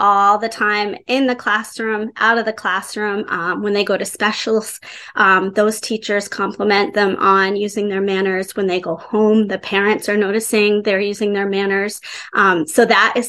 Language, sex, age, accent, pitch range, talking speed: English, female, 20-39, American, 195-235 Hz, 185 wpm